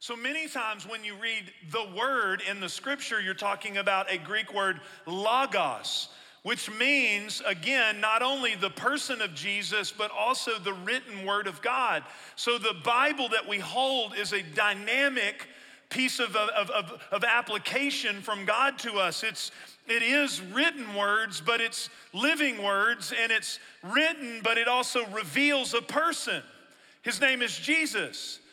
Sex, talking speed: male, 160 wpm